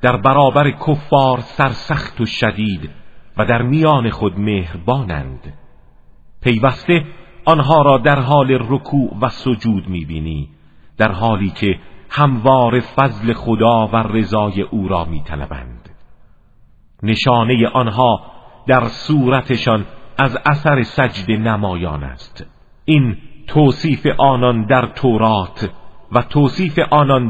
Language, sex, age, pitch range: Arabic, male, 50-69, 100-140 Hz